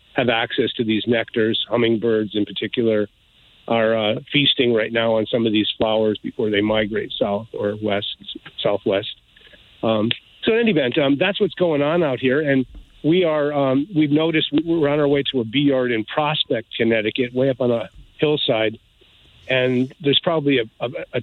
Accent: American